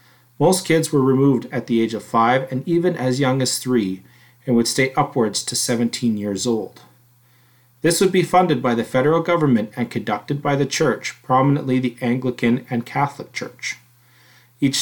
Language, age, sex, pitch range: English, 30-49, male, 120-155 Hz